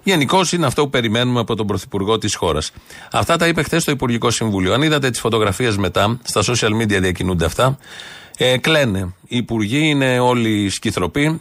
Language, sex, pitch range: Greek, male, 110-145 Hz